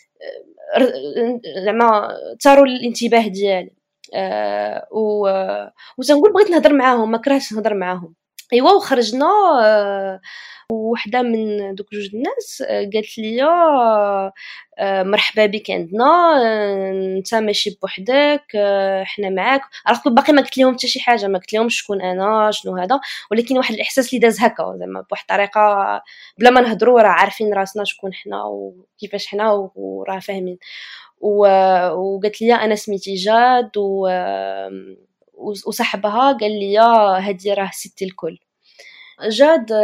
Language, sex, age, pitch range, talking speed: Arabic, female, 20-39, 195-250 Hz, 120 wpm